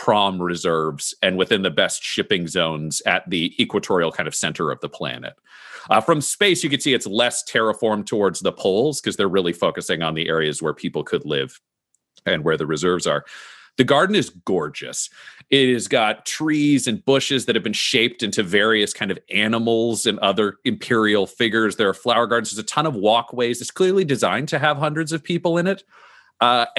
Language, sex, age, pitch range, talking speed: English, male, 40-59, 100-140 Hz, 195 wpm